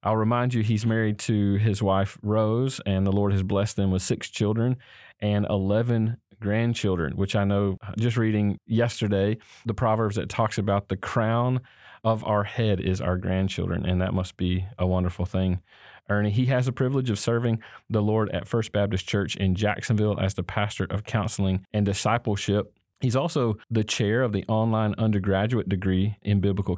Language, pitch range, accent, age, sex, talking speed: English, 95-110 Hz, American, 30-49, male, 180 wpm